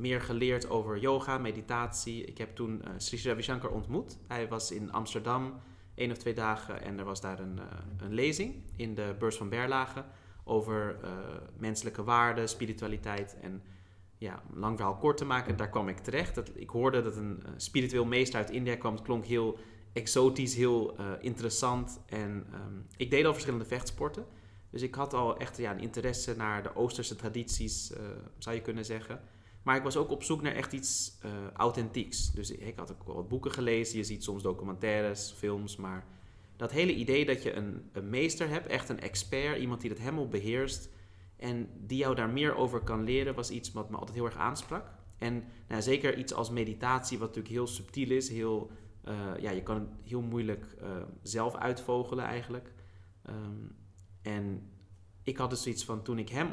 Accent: Dutch